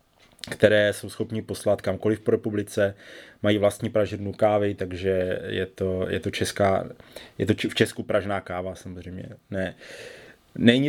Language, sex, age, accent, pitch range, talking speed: Czech, male, 20-39, native, 100-110 Hz, 150 wpm